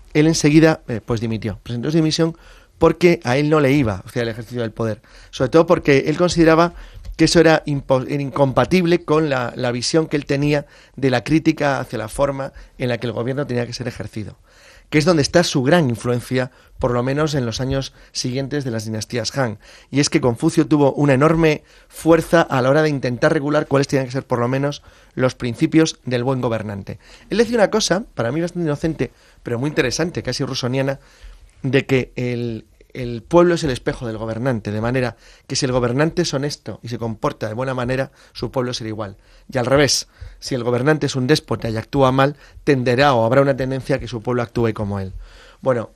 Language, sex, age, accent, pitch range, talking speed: English, male, 30-49, Spanish, 120-150 Hz, 210 wpm